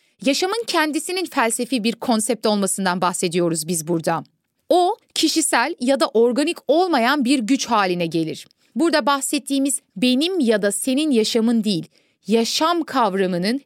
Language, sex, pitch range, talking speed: Turkish, female, 200-305 Hz, 125 wpm